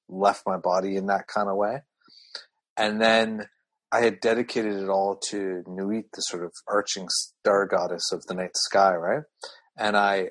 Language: English